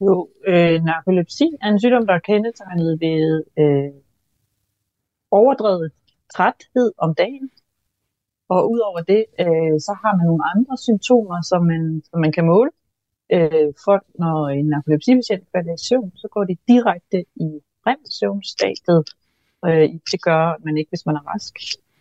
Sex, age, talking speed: female, 30-49, 150 wpm